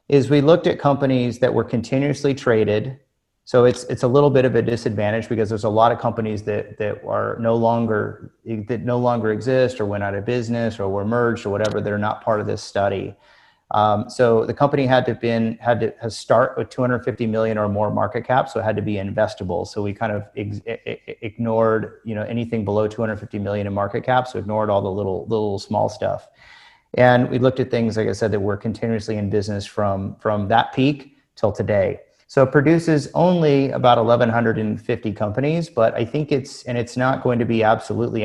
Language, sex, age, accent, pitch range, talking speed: English, male, 30-49, American, 110-125 Hz, 205 wpm